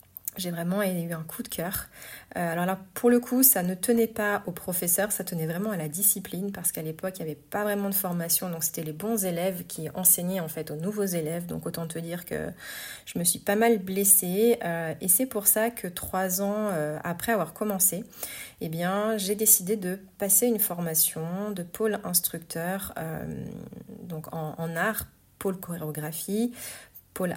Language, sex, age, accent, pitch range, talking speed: French, female, 30-49, French, 165-205 Hz, 195 wpm